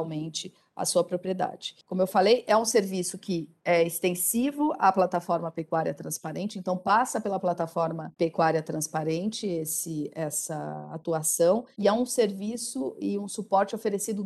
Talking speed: 135 wpm